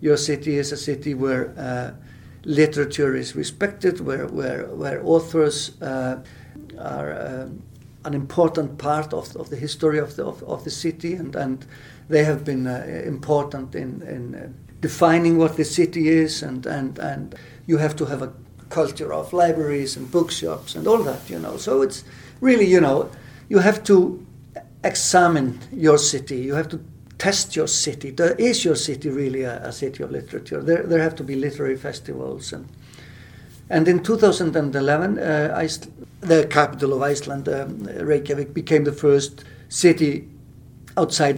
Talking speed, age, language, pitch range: 165 wpm, 60-79, English, 135-165 Hz